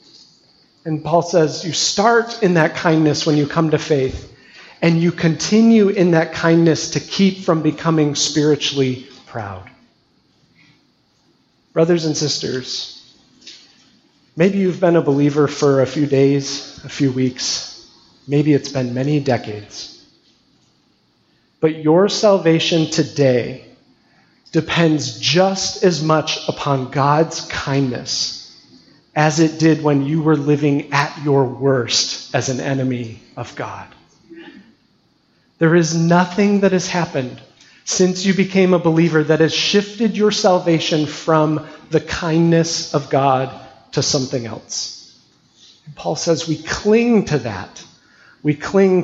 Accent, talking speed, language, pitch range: American, 125 wpm, English, 140-175 Hz